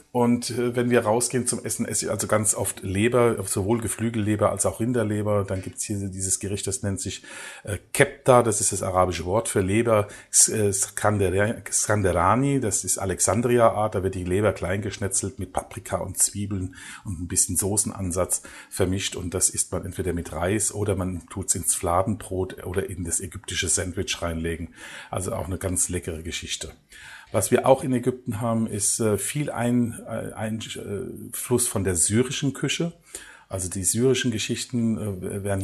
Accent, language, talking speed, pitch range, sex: German, German, 155 wpm, 95-115 Hz, male